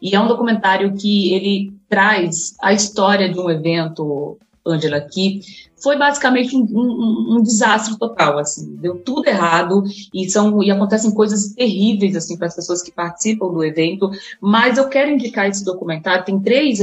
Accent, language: Brazilian, Portuguese